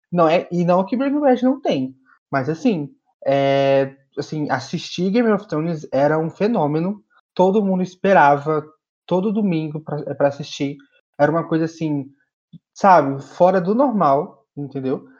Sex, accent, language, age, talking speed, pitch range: male, Brazilian, Portuguese, 20-39, 150 wpm, 150-190 Hz